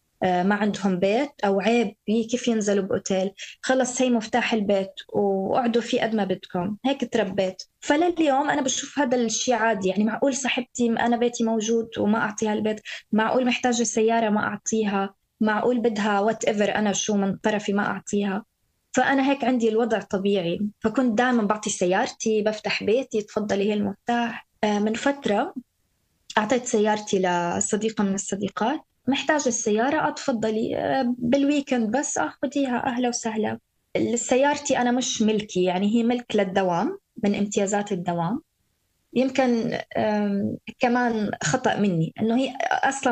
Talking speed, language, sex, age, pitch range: 135 wpm, Arabic, female, 20-39, 205-250 Hz